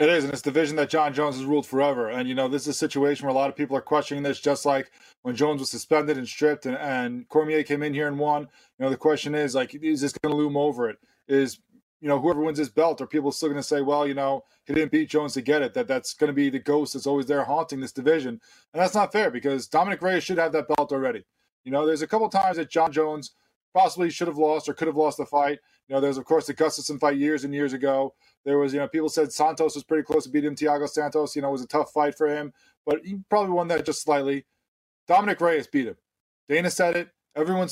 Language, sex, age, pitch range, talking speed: English, male, 20-39, 140-160 Hz, 275 wpm